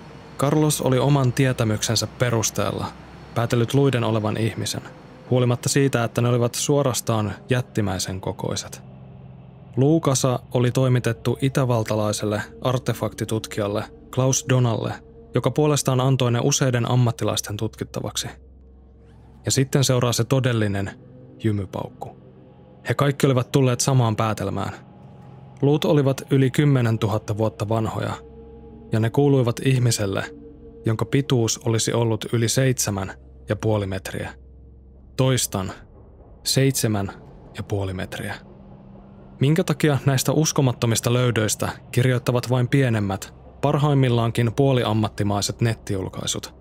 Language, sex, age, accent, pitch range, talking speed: Finnish, male, 20-39, native, 105-130 Hz, 100 wpm